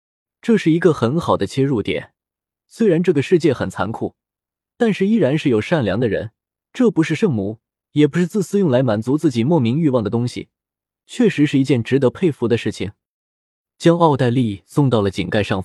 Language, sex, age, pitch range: Chinese, male, 20-39, 115-175 Hz